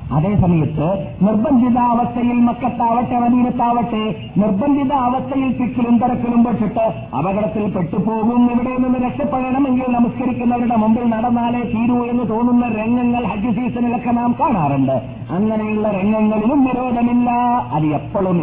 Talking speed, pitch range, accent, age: 95 wpm, 150-240 Hz, native, 50-69